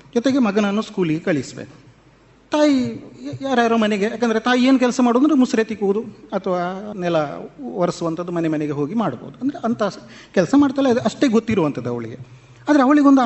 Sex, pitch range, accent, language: male, 160-245 Hz, native, Kannada